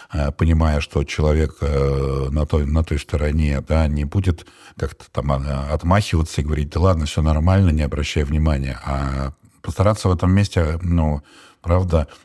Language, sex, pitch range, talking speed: Russian, male, 75-90 Hz, 145 wpm